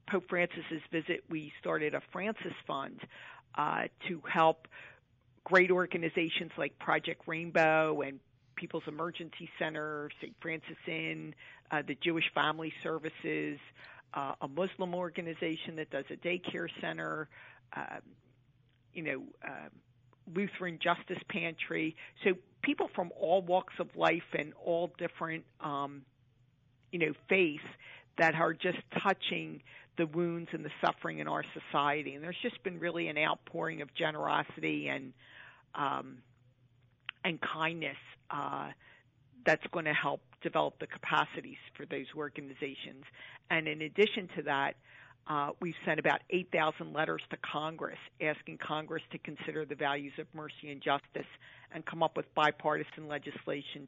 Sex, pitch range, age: female, 140-170 Hz, 50-69